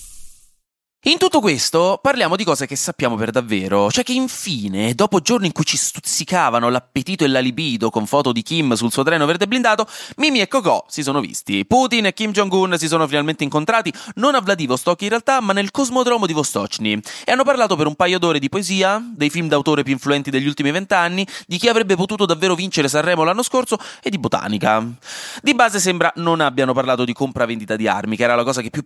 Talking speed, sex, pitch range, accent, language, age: 210 wpm, male, 130-210 Hz, native, Italian, 30-49